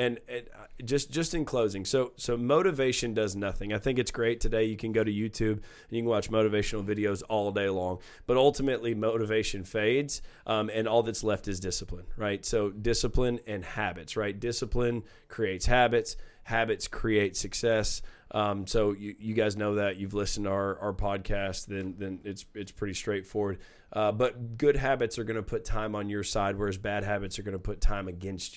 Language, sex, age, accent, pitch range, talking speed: English, male, 20-39, American, 100-115 Hz, 195 wpm